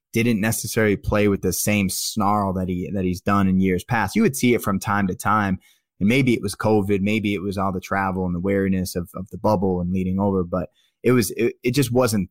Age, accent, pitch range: 20-39, American, 95-115 Hz